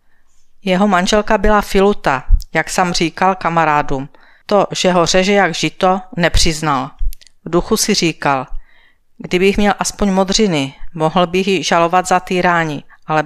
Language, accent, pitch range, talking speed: Czech, native, 165-205 Hz, 135 wpm